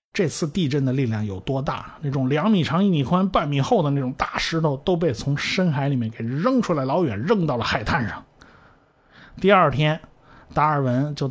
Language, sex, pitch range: Chinese, male, 130-170 Hz